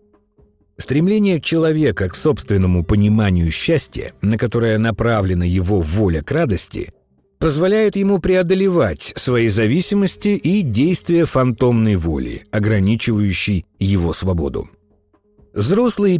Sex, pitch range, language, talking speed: male, 100-155 Hz, Russian, 95 wpm